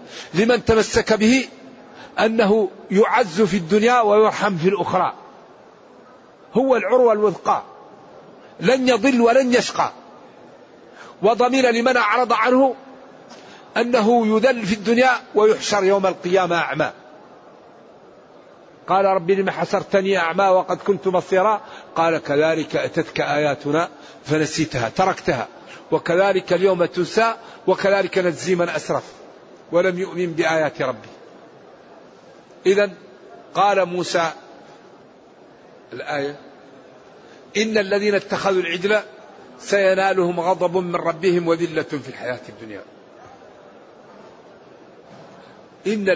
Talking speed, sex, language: 90 wpm, male, Arabic